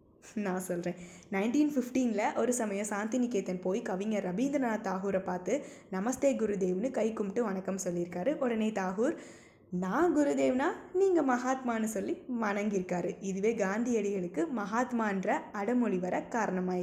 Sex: female